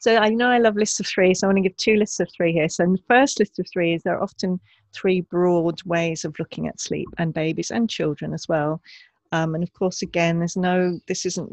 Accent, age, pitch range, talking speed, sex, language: British, 40-59, 155-185 Hz, 260 wpm, female, English